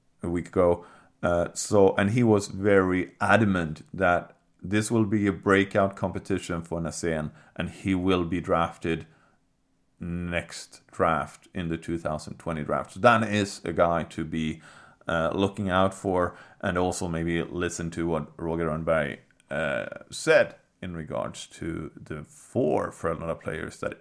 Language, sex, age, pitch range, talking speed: English, male, 30-49, 85-105 Hz, 150 wpm